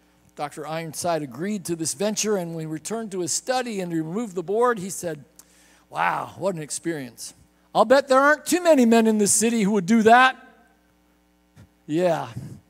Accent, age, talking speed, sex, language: American, 50-69, 180 wpm, male, English